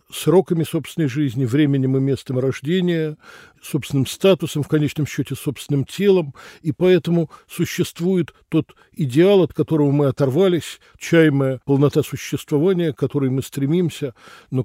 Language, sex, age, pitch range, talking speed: Russian, male, 60-79, 135-180 Hz, 125 wpm